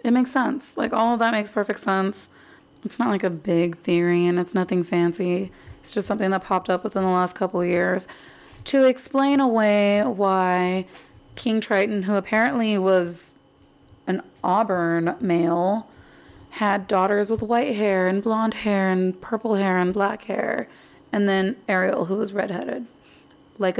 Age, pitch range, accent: 20-39, 185-220 Hz, American